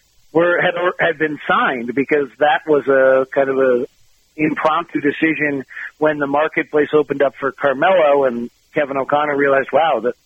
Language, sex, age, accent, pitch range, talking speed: English, male, 40-59, American, 130-150 Hz, 165 wpm